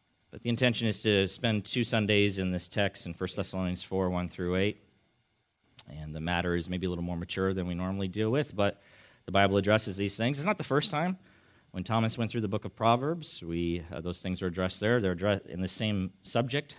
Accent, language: American, English